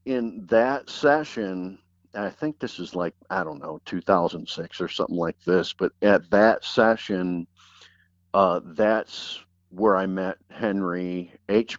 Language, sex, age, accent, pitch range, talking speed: English, male, 50-69, American, 90-105 Hz, 135 wpm